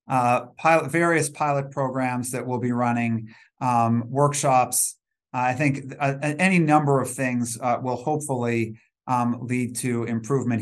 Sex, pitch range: male, 115-135 Hz